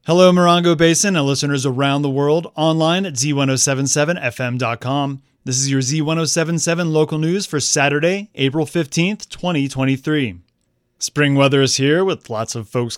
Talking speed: 140 wpm